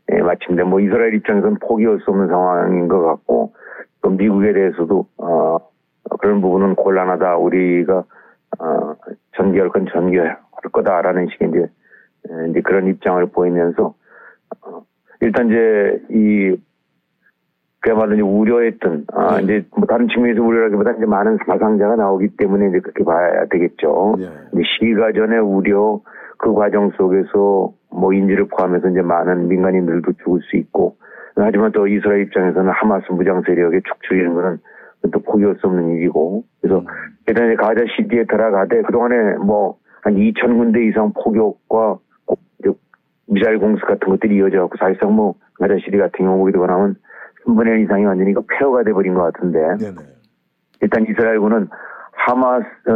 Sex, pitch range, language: male, 95-110 Hz, Korean